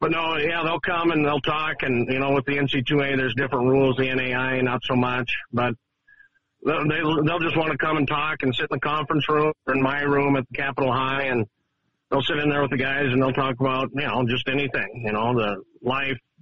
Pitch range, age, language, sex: 125-150 Hz, 50-69, English, male